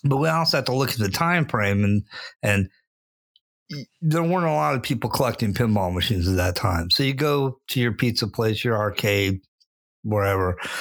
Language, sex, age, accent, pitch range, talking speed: English, male, 50-69, American, 95-120 Hz, 190 wpm